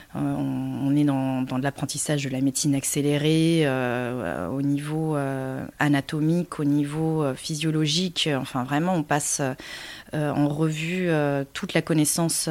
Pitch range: 145-175 Hz